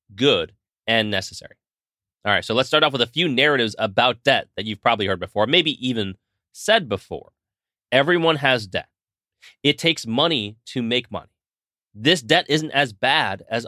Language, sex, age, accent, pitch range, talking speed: English, male, 30-49, American, 110-155 Hz, 170 wpm